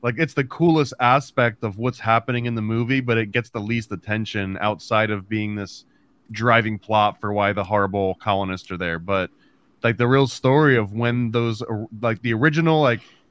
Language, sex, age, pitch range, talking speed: English, male, 20-39, 110-135 Hz, 190 wpm